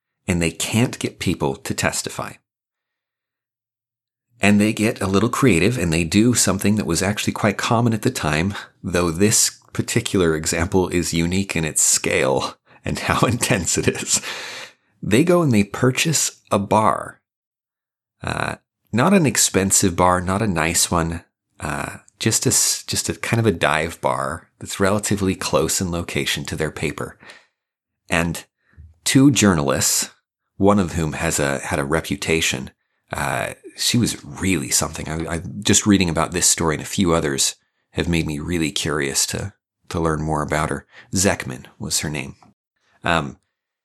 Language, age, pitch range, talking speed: English, 30-49, 80-105 Hz, 160 wpm